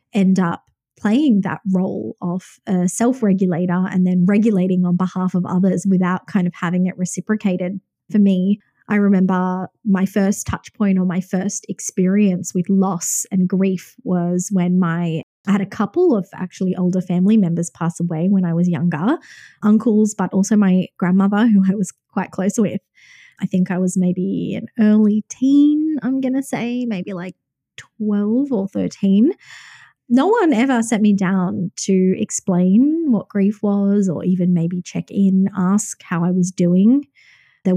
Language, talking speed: English, 170 wpm